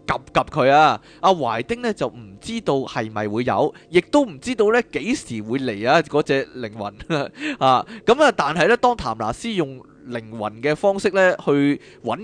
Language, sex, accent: Chinese, male, native